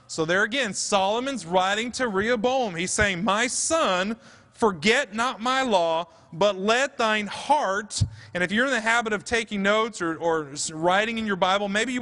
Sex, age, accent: male, 30-49, American